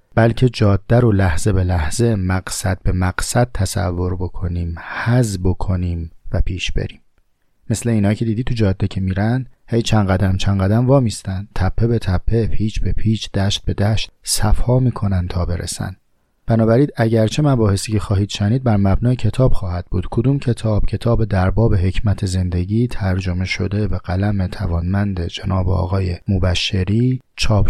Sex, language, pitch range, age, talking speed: male, Persian, 95-115 Hz, 30-49, 155 wpm